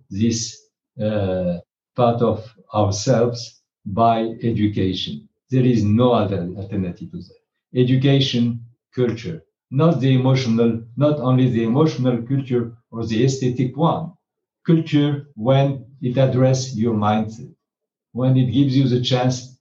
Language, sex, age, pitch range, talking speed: English, male, 60-79, 110-135 Hz, 120 wpm